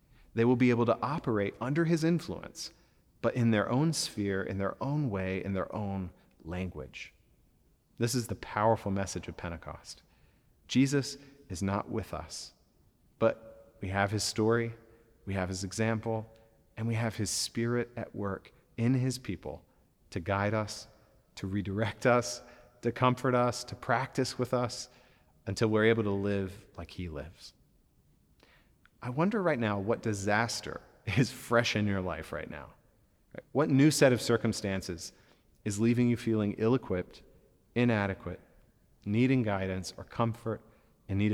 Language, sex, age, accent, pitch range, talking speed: English, male, 30-49, American, 95-120 Hz, 150 wpm